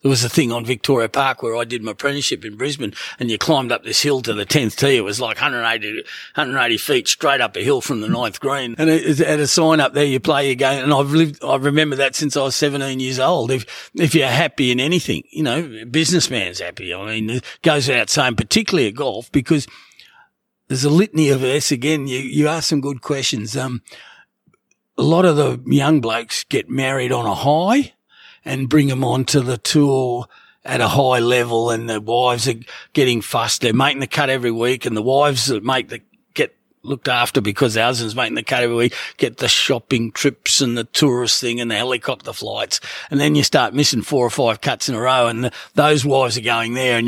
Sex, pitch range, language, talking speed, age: male, 120-145 Hz, English, 225 wpm, 40-59